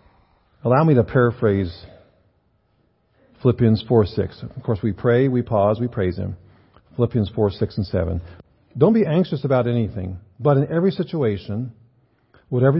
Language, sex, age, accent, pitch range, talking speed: English, male, 50-69, American, 100-135 Hz, 145 wpm